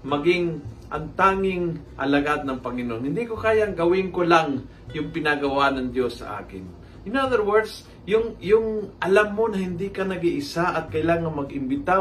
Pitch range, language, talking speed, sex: 135-190 Hz, Filipino, 160 wpm, male